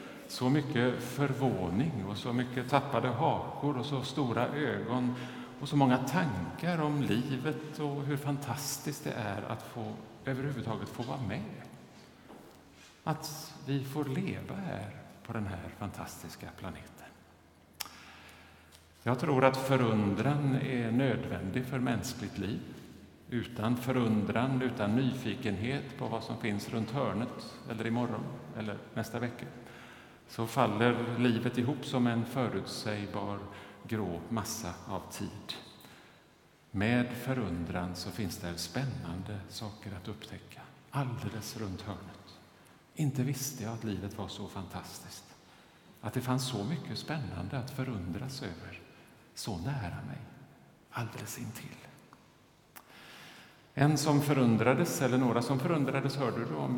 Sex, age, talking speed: male, 50-69, 125 wpm